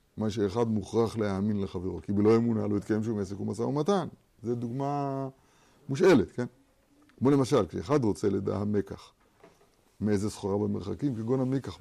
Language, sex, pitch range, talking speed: Hebrew, male, 105-145 Hz, 145 wpm